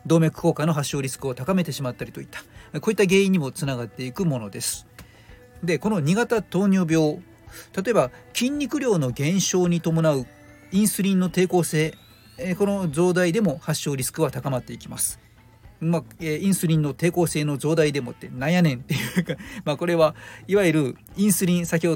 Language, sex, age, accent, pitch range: Japanese, male, 40-59, native, 130-185 Hz